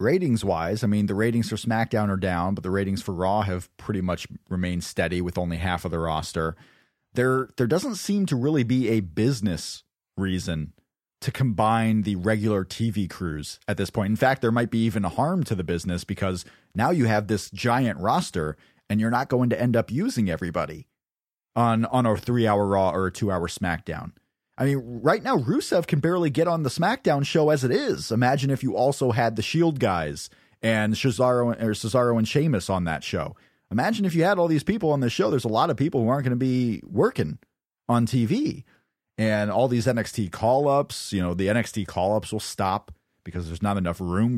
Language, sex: English, male